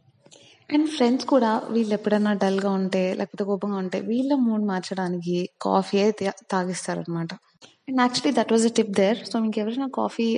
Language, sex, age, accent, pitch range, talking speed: Telugu, female, 20-39, native, 195-235 Hz, 170 wpm